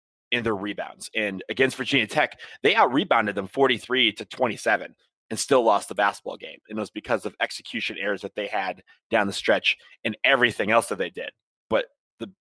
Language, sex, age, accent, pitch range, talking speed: English, male, 30-49, American, 110-130 Hz, 200 wpm